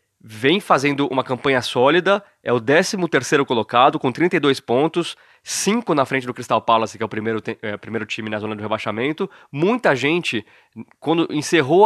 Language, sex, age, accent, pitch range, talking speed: Portuguese, male, 20-39, Brazilian, 120-165 Hz, 170 wpm